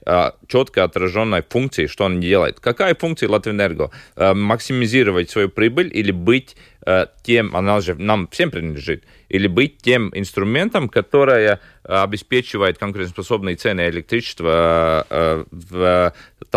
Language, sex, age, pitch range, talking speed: Russian, male, 30-49, 90-115 Hz, 110 wpm